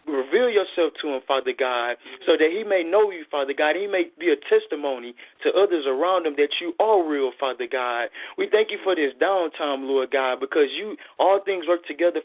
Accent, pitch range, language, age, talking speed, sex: American, 150-255 Hz, English, 20-39, 210 wpm, male